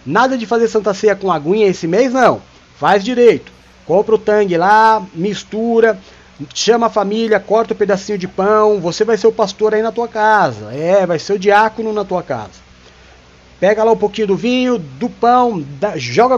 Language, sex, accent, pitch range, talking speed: Portuguese, male, Brazilian, 160-220 Hz, 185 wpm